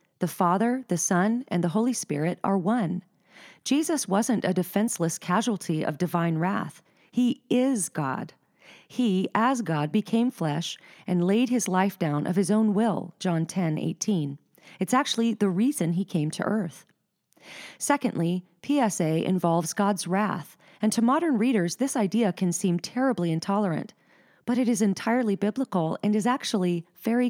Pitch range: 175-220 Hz